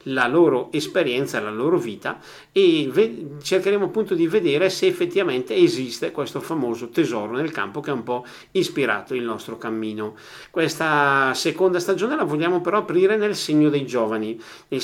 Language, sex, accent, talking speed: Italian, male, native, 160 wpm